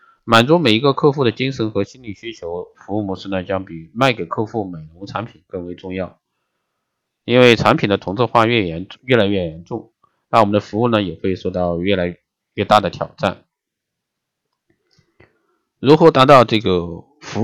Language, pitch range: Chinese, 95-125 Hz